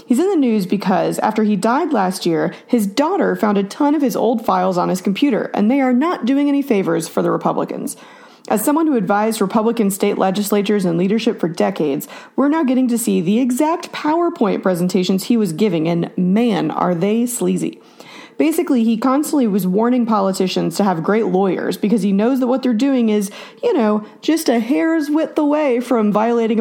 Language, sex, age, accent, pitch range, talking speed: English, female, 30-49, American, 195-260 Hz, 195 wpm